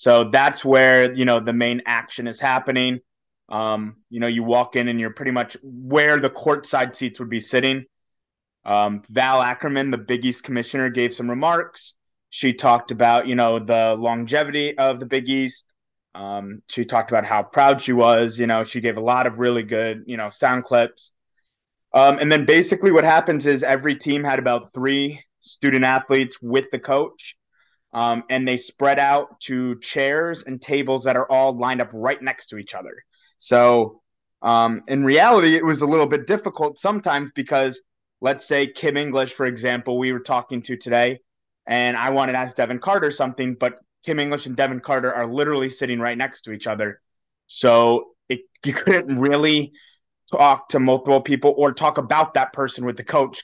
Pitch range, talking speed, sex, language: 120-140 Hz, 190 wpm, male, English